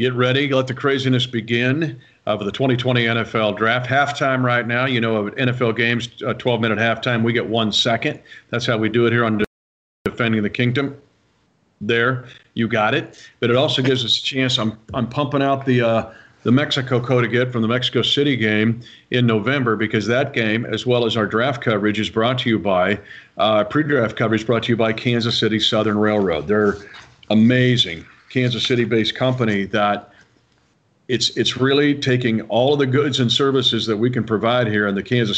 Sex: male